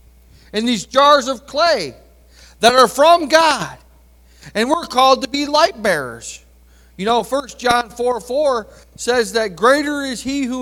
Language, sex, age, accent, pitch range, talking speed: English, male, 40-59, American, 205-285 Hz, 160 wpm